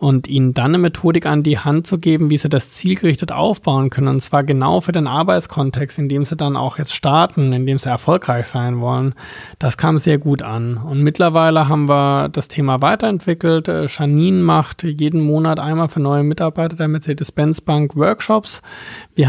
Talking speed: 185 wpm